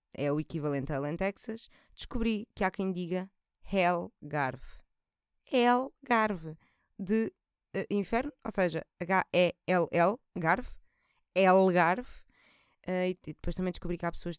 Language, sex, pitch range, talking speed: Portuguese, female, 155-210 Hz, 125 wpm